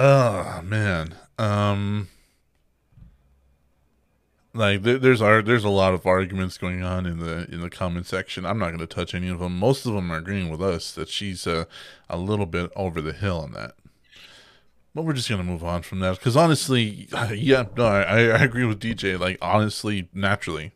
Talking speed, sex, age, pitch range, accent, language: 190 wpm, male, 20-39, 90-130 Hz, American, English